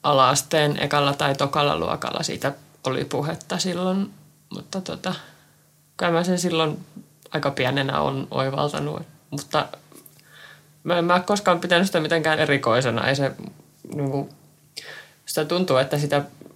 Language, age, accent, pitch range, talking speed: Finnish, 20-39, native, 135-155 Hz, 130 wpm